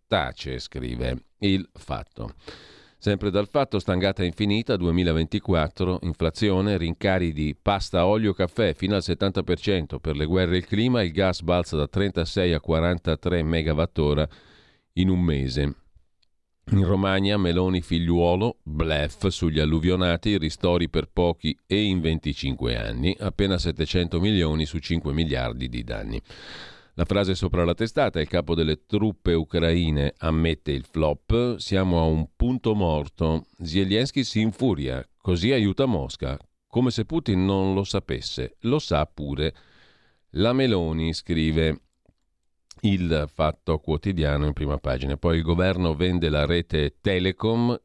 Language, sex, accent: Italian, male, native